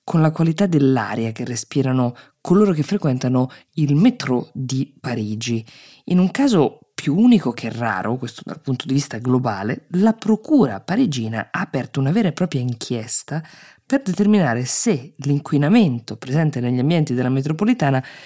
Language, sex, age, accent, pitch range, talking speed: Italian, female, 20-39, native, 125-175 Hz, 150 wpm